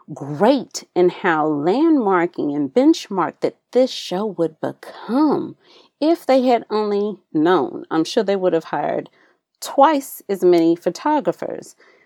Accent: American